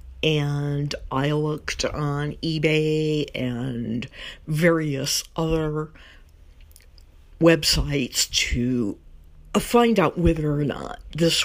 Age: 50-69